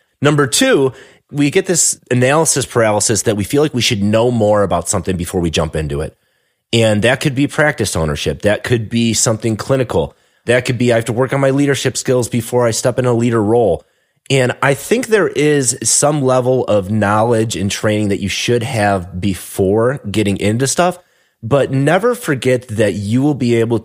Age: 30-49